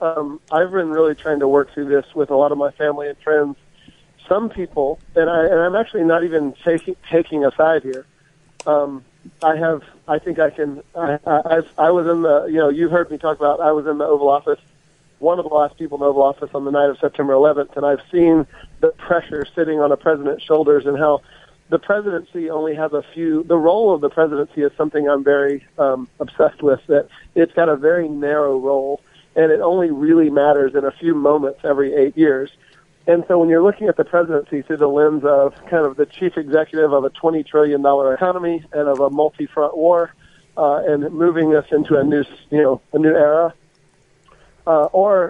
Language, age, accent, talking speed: English, 40-59, American, 215 wpm